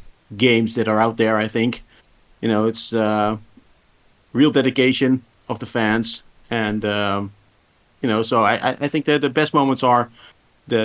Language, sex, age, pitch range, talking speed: English, male, 50-69, 105-125 Hz, 165 wpm